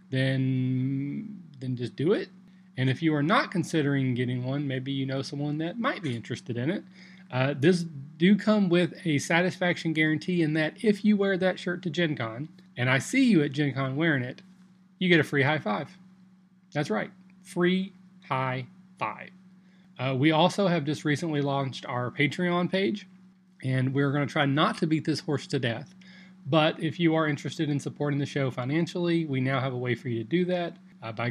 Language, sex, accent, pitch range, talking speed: English, male, American, 130-180 Hz, 200 wpm